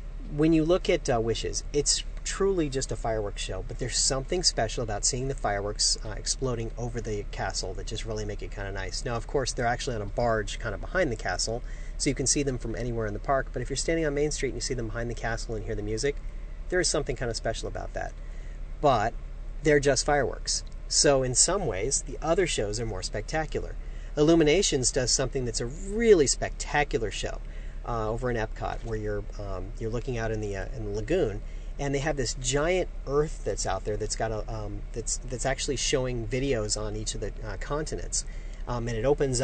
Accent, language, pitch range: American, English, 110-135 Hz